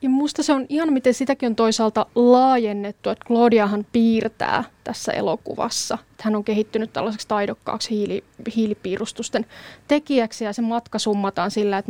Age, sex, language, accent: 20-39, female, Finnish, native